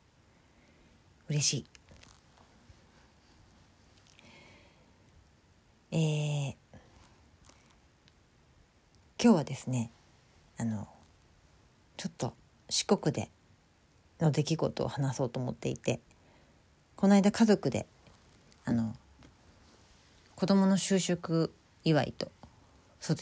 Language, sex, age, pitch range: Japanese, female, 40-59, 105-160 Hz